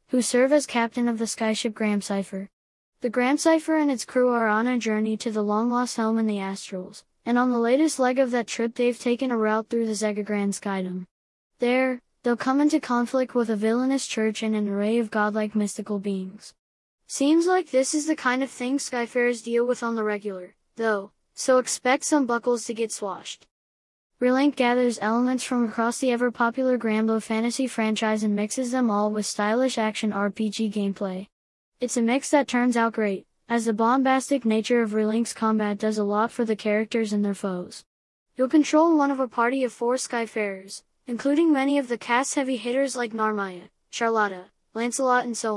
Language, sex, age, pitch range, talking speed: English, female, 10-29, 215-255 Hz, 185 wpm